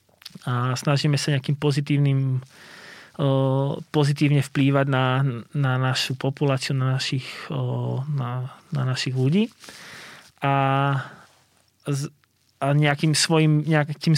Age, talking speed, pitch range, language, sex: 20-39, 90 wpm, 140-160 Hz, Slovak, male